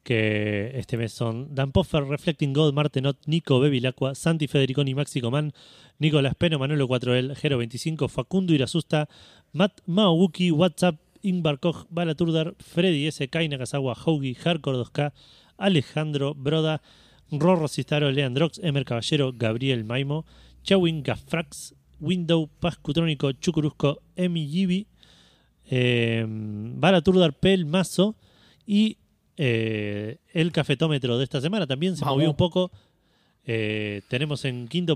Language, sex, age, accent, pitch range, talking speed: Spanish, male, 30-49, Argentinian, 125-165 Hz, 125 wpm